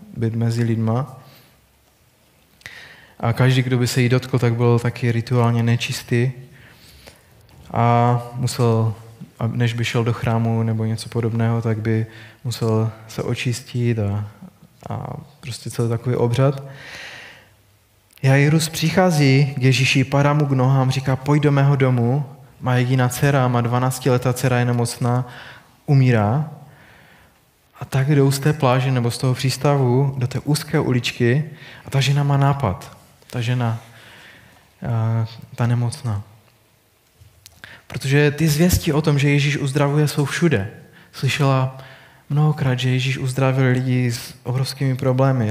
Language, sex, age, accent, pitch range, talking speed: Czech, male, 20-39, native, 115-135 Hz, 130 wpm